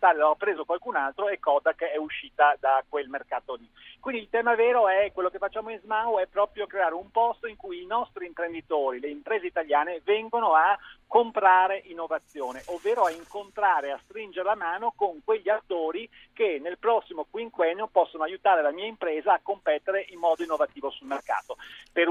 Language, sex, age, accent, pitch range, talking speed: Italian, male, 40-59, native, 170-215 Hz, 180 wpm